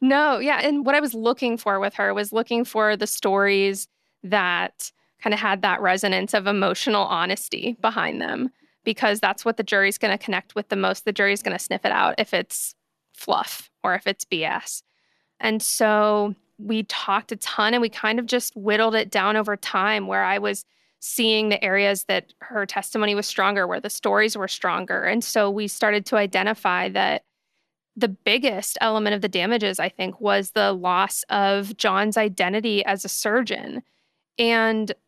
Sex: female